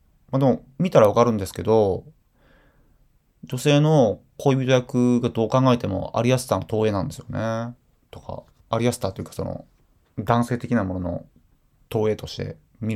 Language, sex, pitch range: Japanese, male, 100-155 Hz